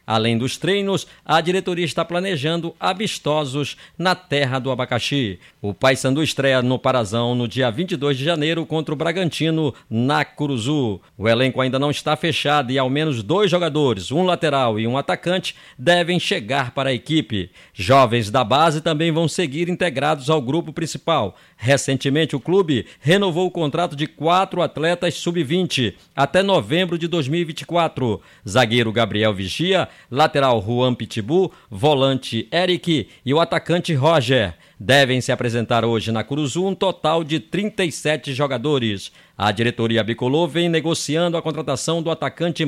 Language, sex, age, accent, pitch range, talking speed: Portuguese, male, 50-69, Brazilian, 125-170 Hz, 145 wpm